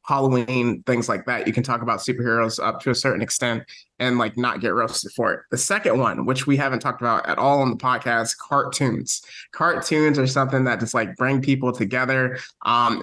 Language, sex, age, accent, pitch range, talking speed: English, male, 20-39, American, 120-140 Hz, 205 wpm